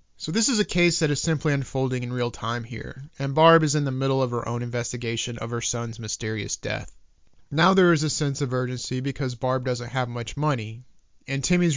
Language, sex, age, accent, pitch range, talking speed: English, male, 30-49, American, 115-145 Hz, 220 wpm